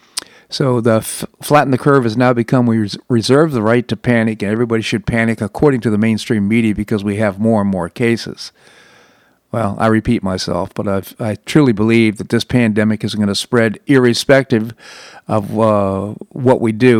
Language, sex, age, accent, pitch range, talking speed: English, male, 50-69, American, 105-125 Hz, 190 wpm